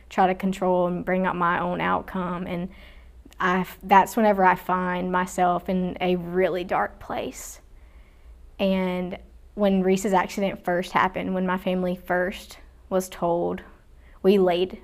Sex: female